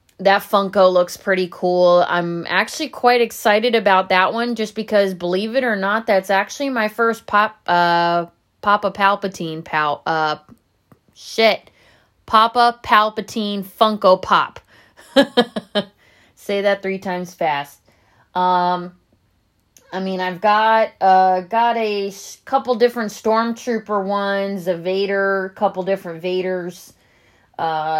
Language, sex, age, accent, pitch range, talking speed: English, female, 20-39, American, 175-220 Hz, 120 wpm